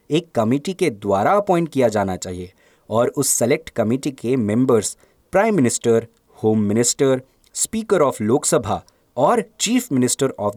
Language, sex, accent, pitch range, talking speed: Hindi, male, native, 115-180 Hz, 140 wpm